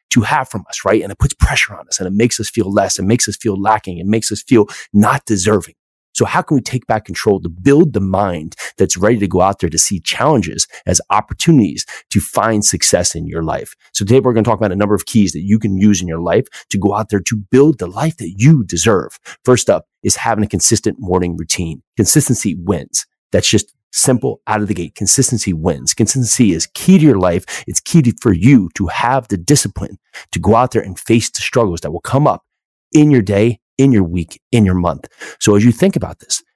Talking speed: 240 wpm